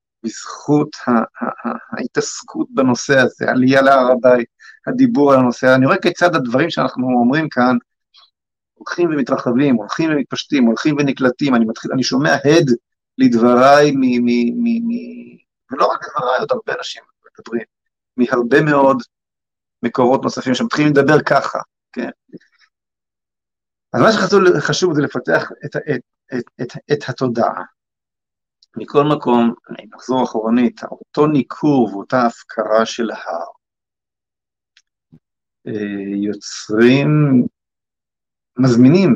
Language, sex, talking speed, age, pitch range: Hebrew, male, 110 wpm, 50-69, 115-145 Hz